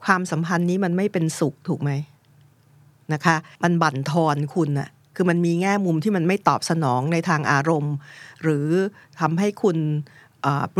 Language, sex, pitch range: Thai, female, 140-180 Hz